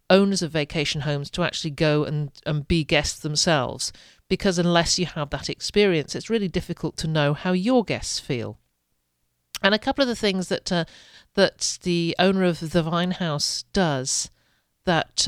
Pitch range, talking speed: 145-185 Hz, 175 wpm